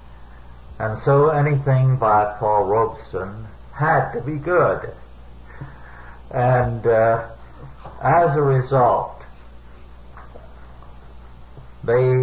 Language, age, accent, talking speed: English, 60-79, American, 80 wpm